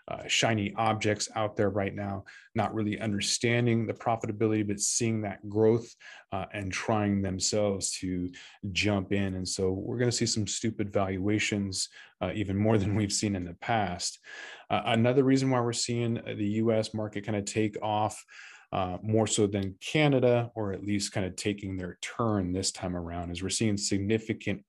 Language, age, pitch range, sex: English, 20-39, 95-110 Hz, male